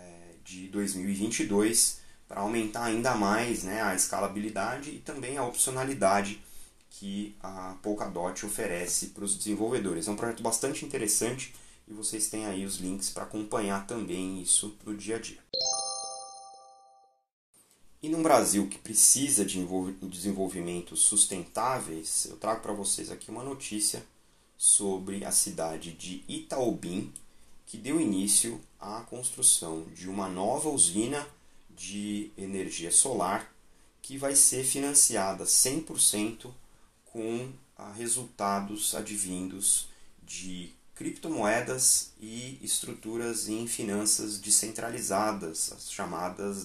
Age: 30-49